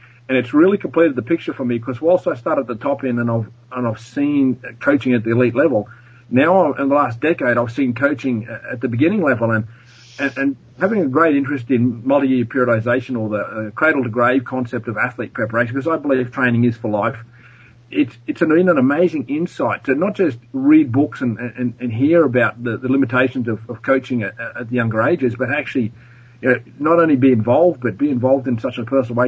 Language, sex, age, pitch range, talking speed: English, male, 40-59, 120-145 Hz, 220 wpm